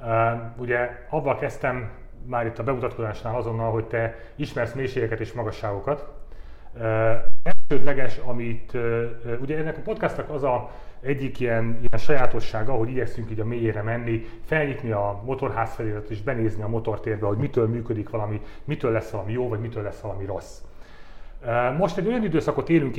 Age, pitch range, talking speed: 30-49, 115-150 Hz, 160 wpm